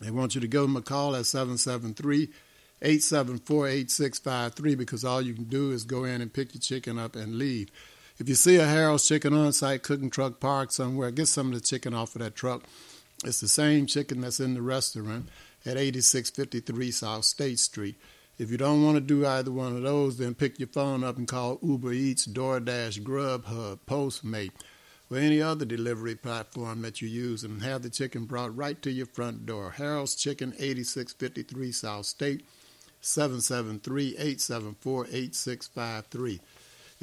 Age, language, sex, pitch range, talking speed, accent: 60-79, English, male, 120-140 Hz, 170 wpm, American